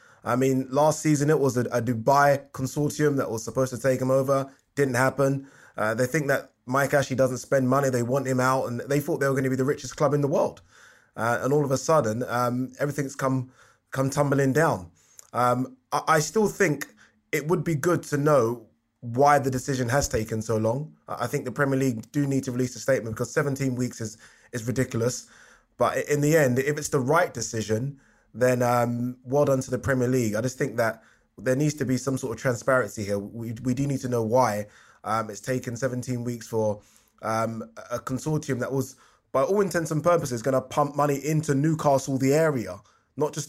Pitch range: 120-145 Hz